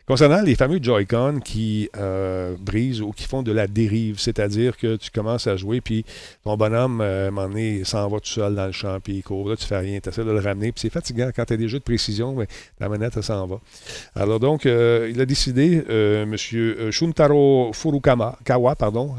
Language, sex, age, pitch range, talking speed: French, male, 40-59, 110-135 Hz, 235 wpm